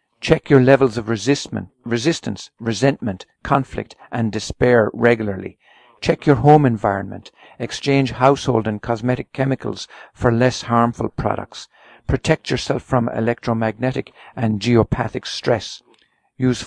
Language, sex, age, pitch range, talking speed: English, male, 50-69, 110-130 Hz, 110 wpm